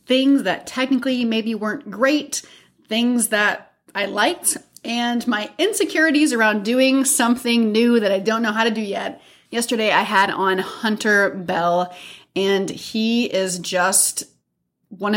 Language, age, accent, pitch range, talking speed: English, 30-49, American, 185-235 Hz, 140 wpm